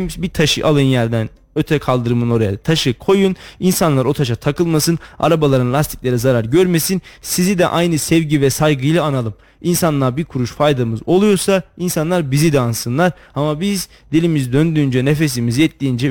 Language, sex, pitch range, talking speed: Turkish, male, 140-175 Hz, 145 wpm